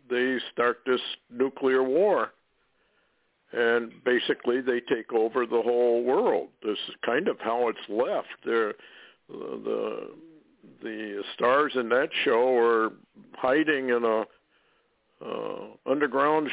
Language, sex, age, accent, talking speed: English, male, 60-79, American, 120 wpm